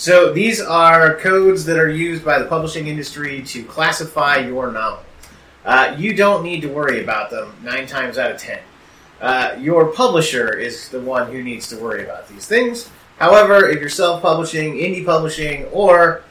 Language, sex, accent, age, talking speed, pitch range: English, male, American, 30-49, 175 wpm, 130-170 Hz